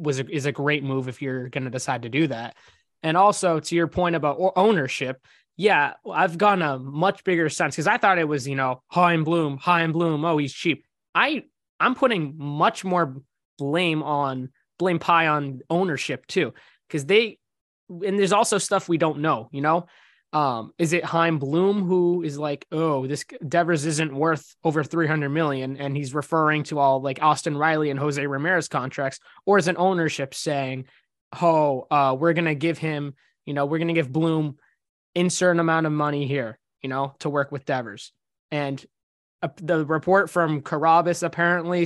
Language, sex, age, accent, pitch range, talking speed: English, male, 20-39, American, 140-170 Hz, 190 wpm